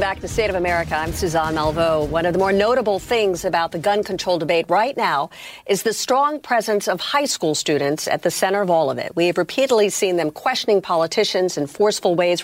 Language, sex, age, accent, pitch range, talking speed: English, female, 50-69, American, 170-235 Hz, 220 wpm